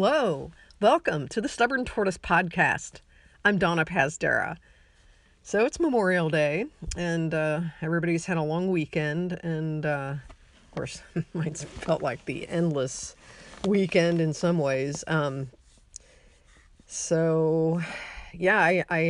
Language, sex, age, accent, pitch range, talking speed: English, female, 40-59, American, 145-180 Hz, 125 wpm